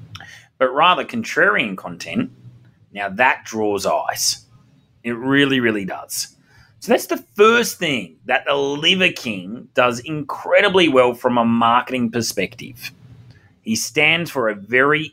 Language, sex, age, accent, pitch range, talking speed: English, male, 30-49, Australian, 110-155 Hz, 130 wpm